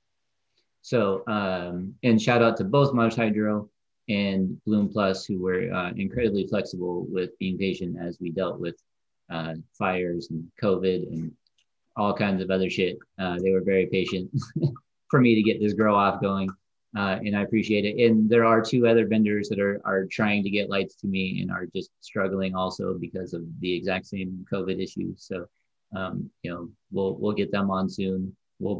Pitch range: 95-105 Hz